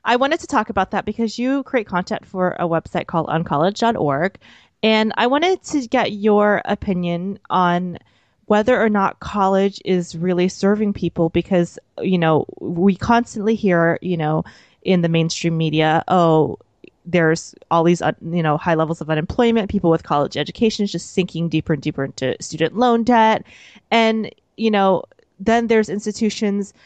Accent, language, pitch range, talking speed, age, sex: American, English, 170-205 Hz, 165 wpm, 20-39, female